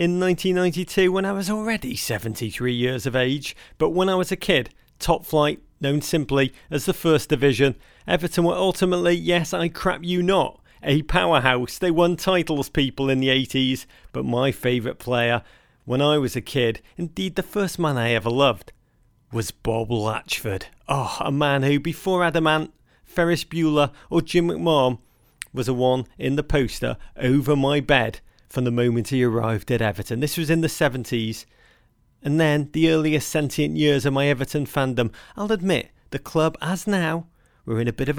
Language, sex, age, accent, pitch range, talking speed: English, male, 40-59, British, 120-160 Hz, 180 wpm